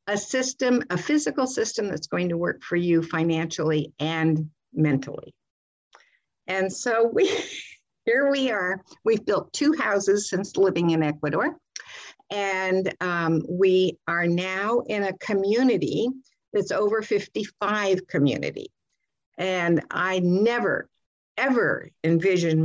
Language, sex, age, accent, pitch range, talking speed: English, female, 60-79, American, 165-220 Hz, 120 wpm